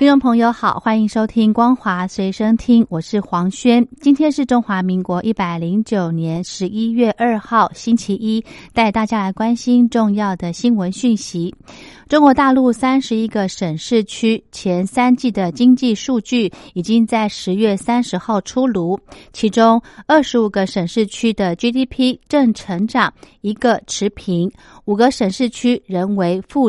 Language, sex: Chinese, female